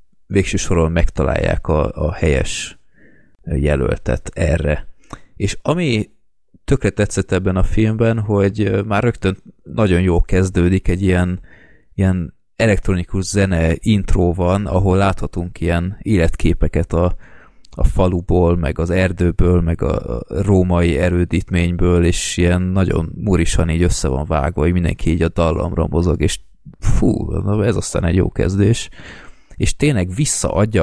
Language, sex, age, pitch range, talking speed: Hungarian, male, 20-39, 85-100 Hz, 130 wpm